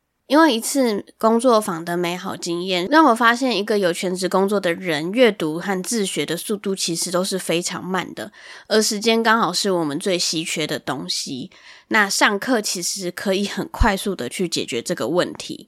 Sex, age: female, 10-29